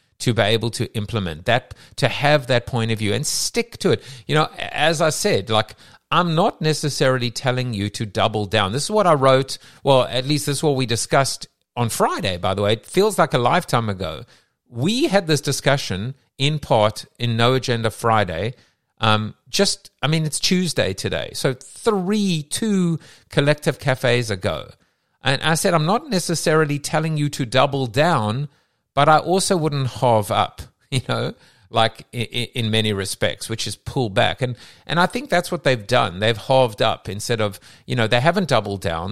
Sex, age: male, 50-69